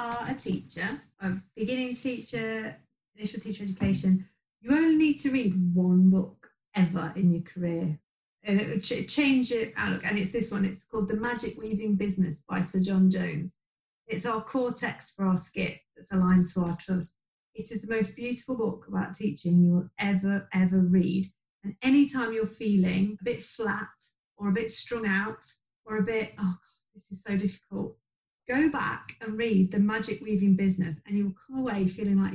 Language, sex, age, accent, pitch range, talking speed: English, female, 30-49, British, 190-235 Hz, 185 wpm